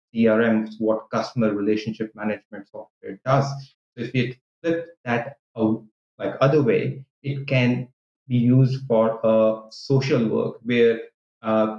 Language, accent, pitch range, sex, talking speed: English, Indian, 110-135 Hz, male, 135 wpm